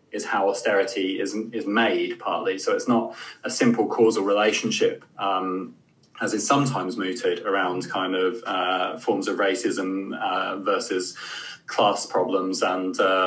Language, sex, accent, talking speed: English, male, British, 140 wpm